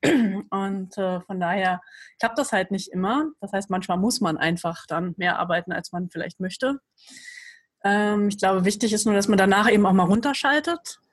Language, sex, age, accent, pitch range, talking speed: German, female, 20-39, German, 185-235 Hz, 190 wpm